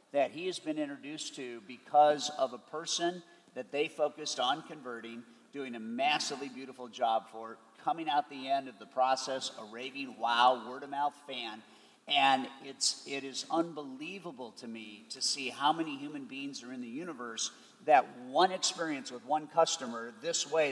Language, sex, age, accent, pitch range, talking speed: English, male, 50-69, American, 130-175 Hz, 170 wpm